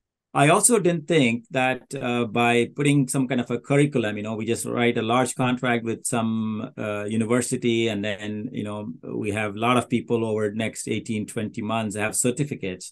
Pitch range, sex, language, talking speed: 105-135 Hz, male, English, 205 wpm